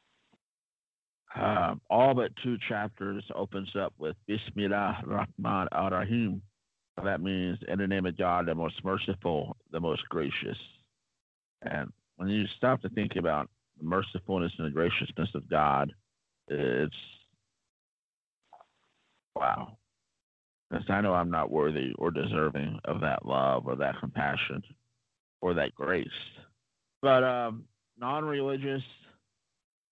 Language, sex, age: English, male, 50-69